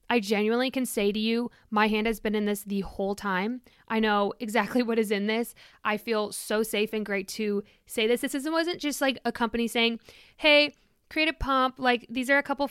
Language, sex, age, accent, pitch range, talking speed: English, female, 20-39, American, 205-235 Hz, 225 wpm